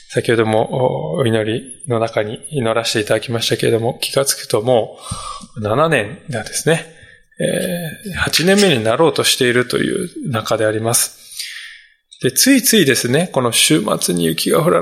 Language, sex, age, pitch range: Japanese, male, 20-39, 120-175 Hz